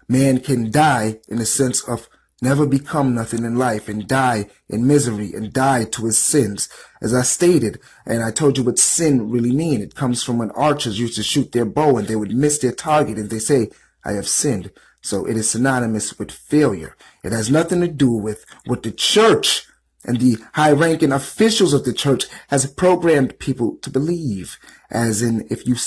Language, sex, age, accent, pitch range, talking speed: English, male, 30-49, American, 110-140 Hz, 195 wpm